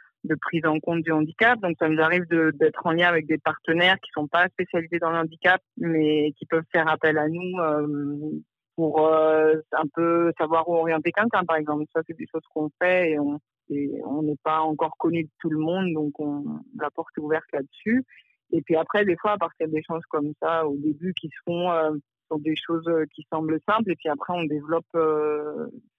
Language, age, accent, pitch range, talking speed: French, 50-69, French, 155-175 Hz, 220 wpm